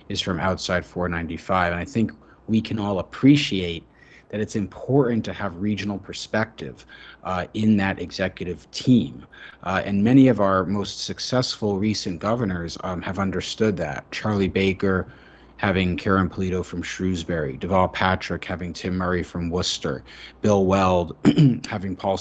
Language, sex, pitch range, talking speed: English, male, 90-100 Hz, 145 wpm